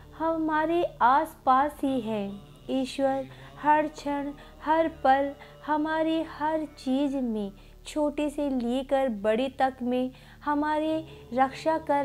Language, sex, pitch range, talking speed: Hindi, female, 245-305 Hz, 110 wpm